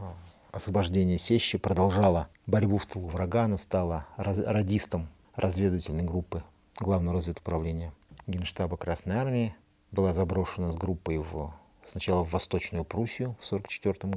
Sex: male